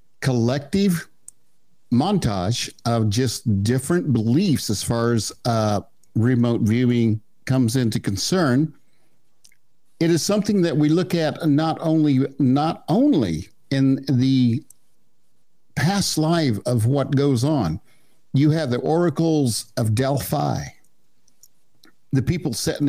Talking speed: 115 wpm